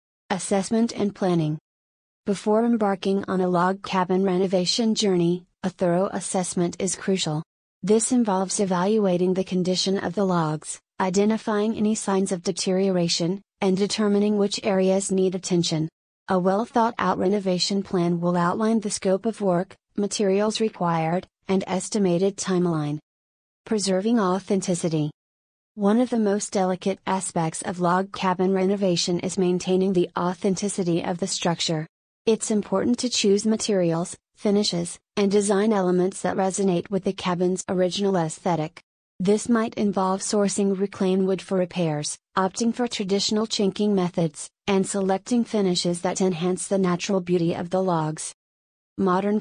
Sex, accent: female, American